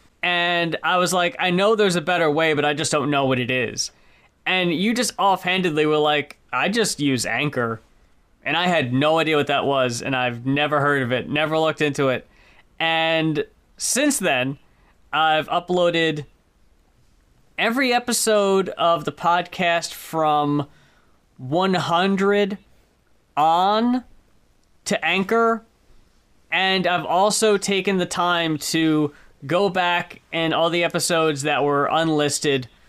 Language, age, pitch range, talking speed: English, 20-39, 140-180 Hz, 140 wpm